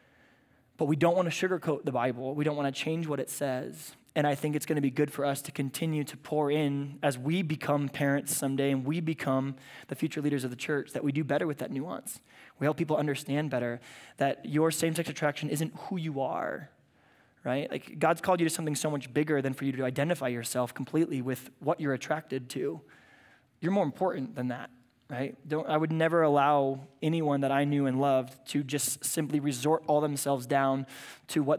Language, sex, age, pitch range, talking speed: English, male, 20-39, 135-160 Hz, 215 wpm